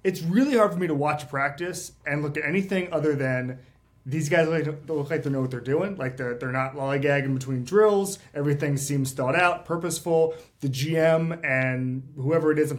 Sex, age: male, 30-49